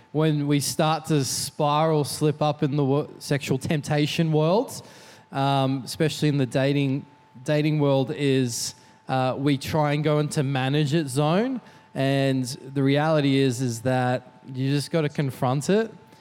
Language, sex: English, male